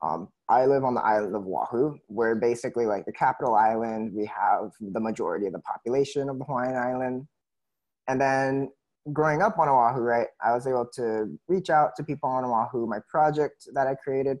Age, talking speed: 20-39, 195 wpm